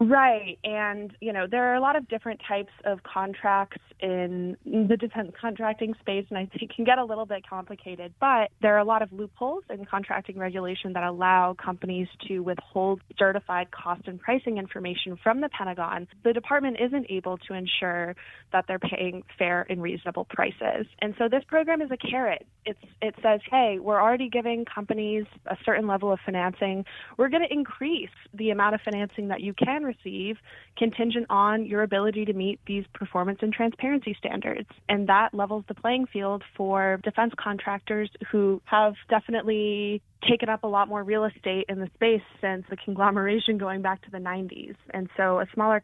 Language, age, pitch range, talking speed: English, 20-39, 190-225 Hz, 185 wpm